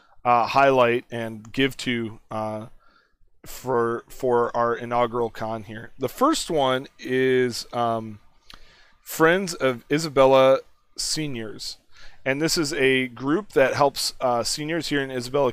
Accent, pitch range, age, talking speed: American, 115-140 Hz, 30-49, 130 wpm